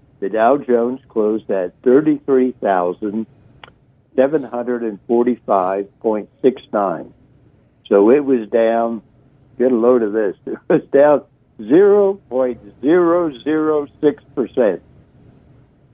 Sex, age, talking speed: male, 60-79, 70 wpm